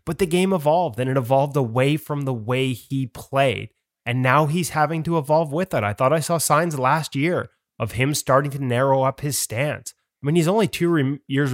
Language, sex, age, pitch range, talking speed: English, male, 20-39, 120-150 Hz, 225 wpm